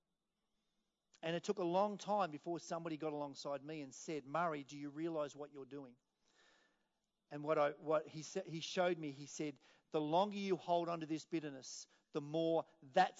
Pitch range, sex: 155-190 Hz, male